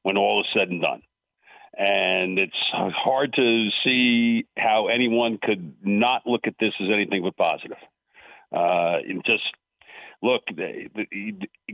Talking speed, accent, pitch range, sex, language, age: 150 wpm, American, 105-125 Hz, male, English, 50-69